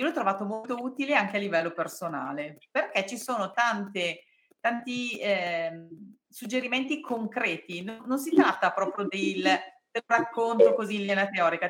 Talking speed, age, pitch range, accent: 150 wpm, 40-59, 180-245 Hz, native